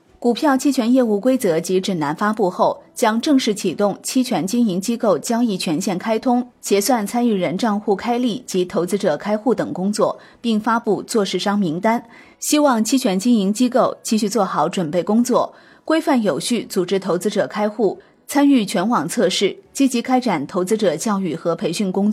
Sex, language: female, Chinese